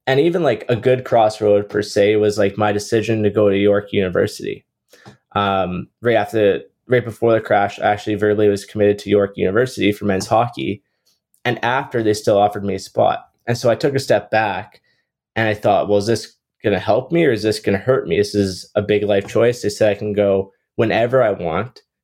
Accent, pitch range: American, 100-110 Hz